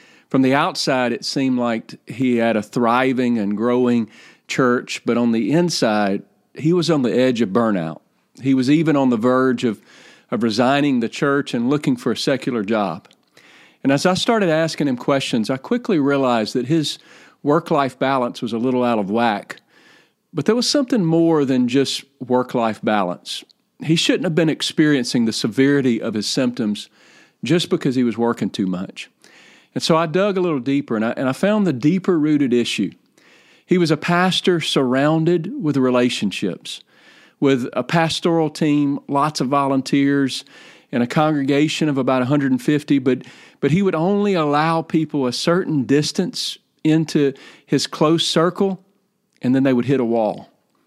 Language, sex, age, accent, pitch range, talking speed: English, male, 40-59, American, 125-165 Hz, 170 wpm